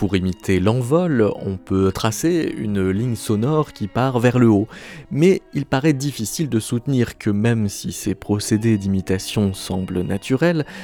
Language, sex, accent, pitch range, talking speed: French, male, French, 100-140 Hz, 155 wpm